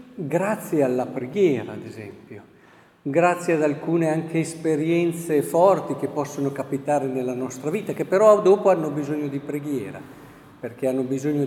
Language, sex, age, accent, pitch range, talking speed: Italian, male, 50-69, native, 150-205 Hz, 140 wpm